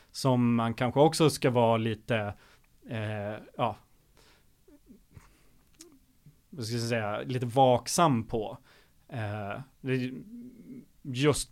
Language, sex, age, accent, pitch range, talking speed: Swedish, male, 30-49, native, 115-130 Hz, 55 wpm